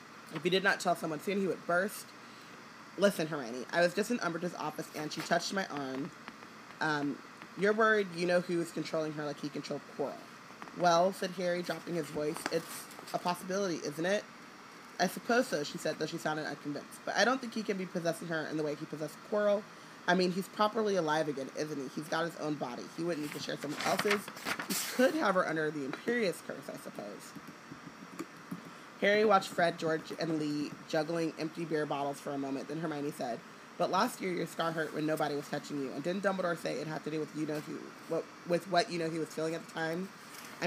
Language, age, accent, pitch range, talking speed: English, 20-39, American, 150-185 Hz, 225 wpm